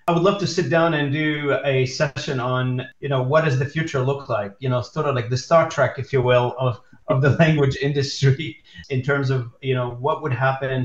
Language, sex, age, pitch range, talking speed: English, male, 40-59, 125-140 Hz, 240 wpm